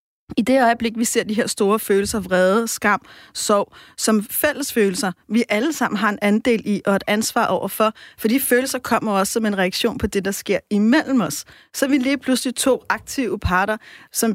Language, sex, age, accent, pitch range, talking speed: Danish, female, 30-49, native, 210-250 Hz, 195 wpm